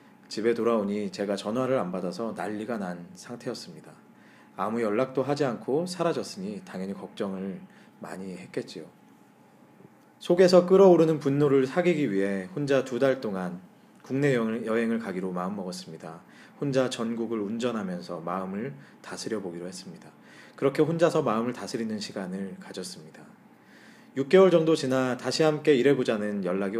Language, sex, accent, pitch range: Korean, male, native, 110-160 Hz